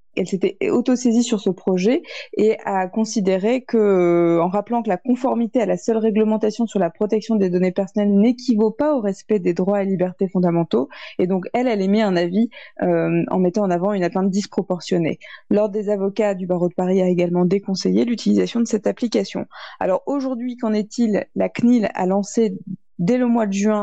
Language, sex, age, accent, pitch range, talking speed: French, female, 20-39, French, 190-230 Hz, 195 wpm